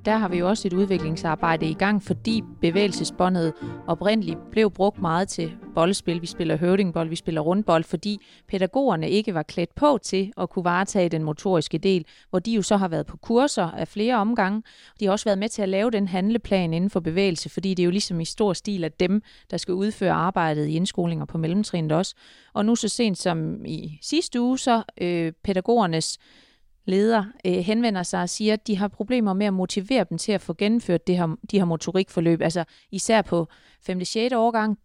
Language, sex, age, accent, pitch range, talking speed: Danish, female, 30-49, native, 170-210 Hz, 200 wpm